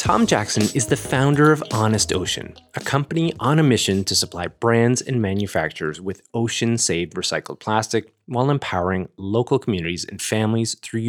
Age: 20-39